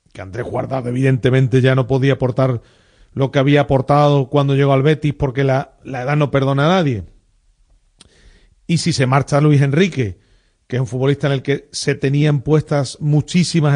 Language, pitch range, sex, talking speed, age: Spanish, 125-165 Hz, male, 180 wpm, 40-59